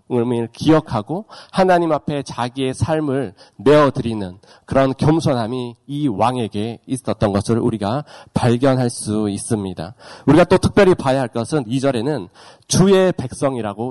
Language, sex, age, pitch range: Korean, male, 40-59, 120-170 Hz